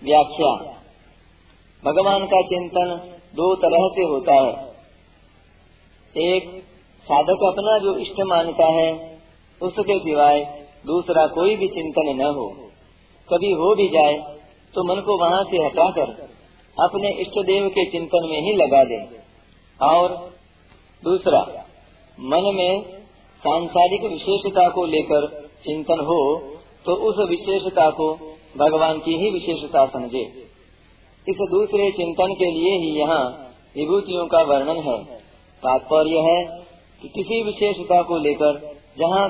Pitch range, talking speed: 145-185 Hz, 120 wpm